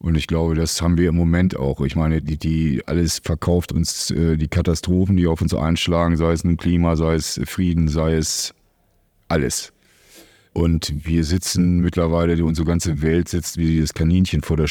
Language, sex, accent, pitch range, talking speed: German, male, German, 75-85 Hz, 190 wpm